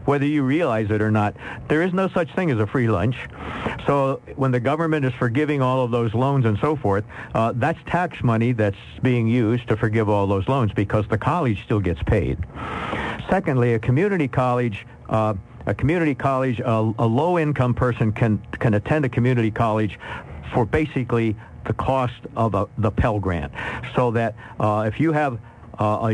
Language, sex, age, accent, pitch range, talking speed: English, male, 60-79, American, 110-130 Hz, 190 wpm